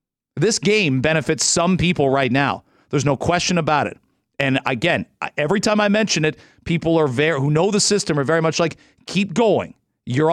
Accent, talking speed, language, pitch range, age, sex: American, 190 wpm, English, 140-180 Hz, 40-59, male